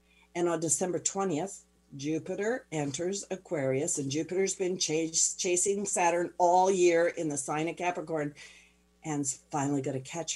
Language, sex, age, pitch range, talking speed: English, female, 50-69, 135-170 Hz, 145 wpm